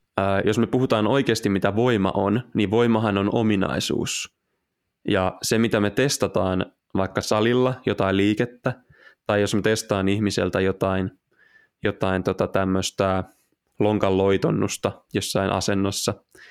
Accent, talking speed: native, 115 wpm